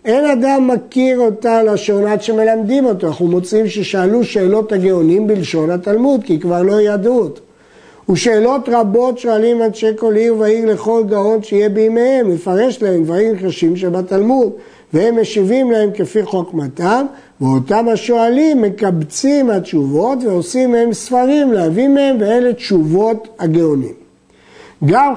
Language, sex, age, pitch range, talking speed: Hebrew, male, 50-69, 190-240 Hz, 130 wpm